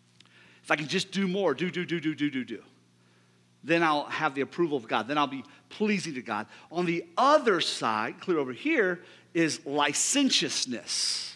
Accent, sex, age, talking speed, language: American, male, 40-59, 185 wpm, English